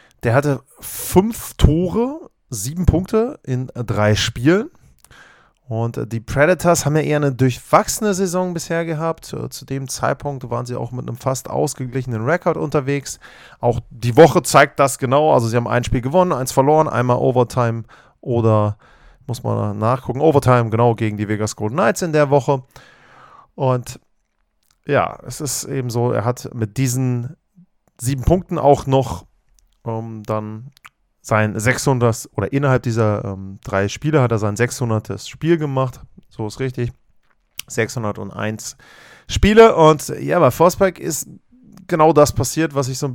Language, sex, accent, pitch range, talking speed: German, male, German, 120-155 Hz, 155 wpm